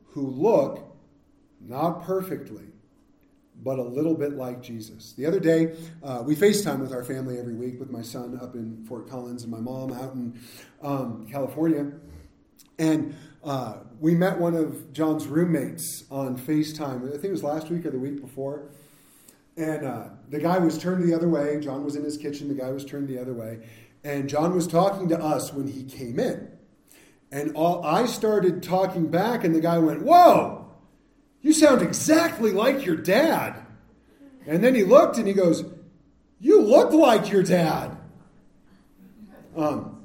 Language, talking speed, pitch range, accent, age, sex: English, 175 wpm, 135-185 Hz, American, 40-59, male